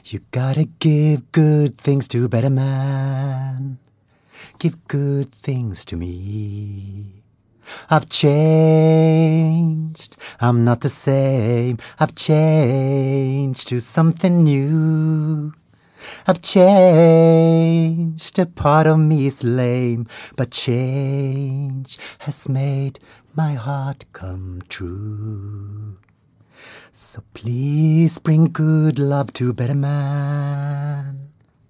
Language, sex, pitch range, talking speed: Swedish, male, 120-155 Hz, 95 wpm